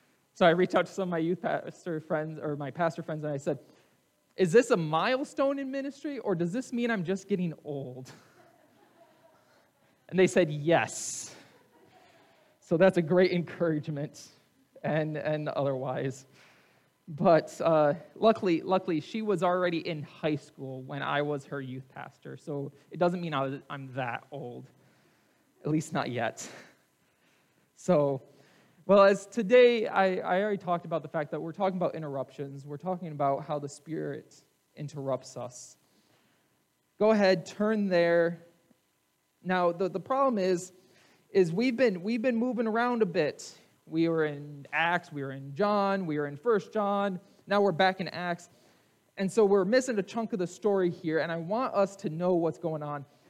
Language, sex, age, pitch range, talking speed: English, male, 20-39, 150-200 Hz, 170 wpm